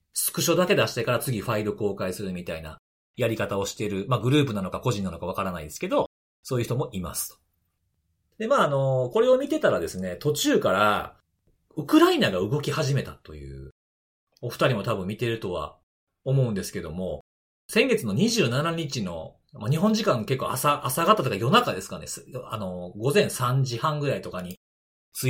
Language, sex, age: Japanese, male, 40-59